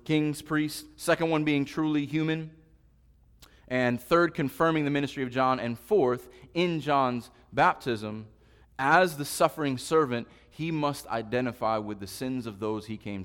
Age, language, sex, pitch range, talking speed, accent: 30-49, English, male, 110-160 Hz, 150 wpm, American